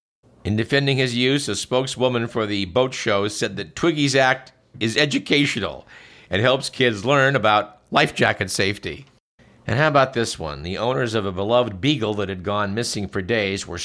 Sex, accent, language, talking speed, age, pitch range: male, American, English, 180 wpm, 50-69, 105-130 Hz